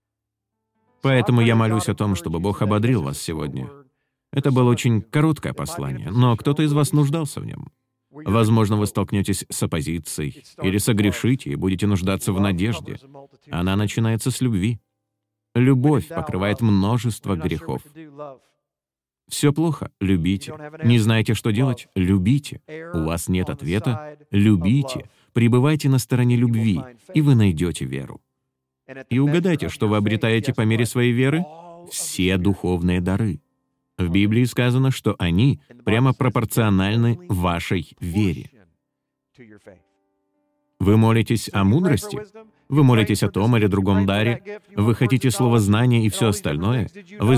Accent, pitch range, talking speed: native, 100-130 Hz, 130 wpm